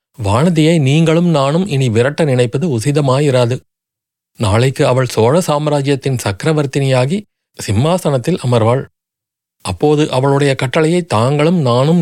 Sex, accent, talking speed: male, native, 95 wpm